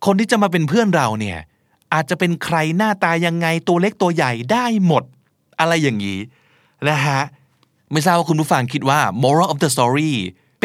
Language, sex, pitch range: Thai, male, 140-195 Hz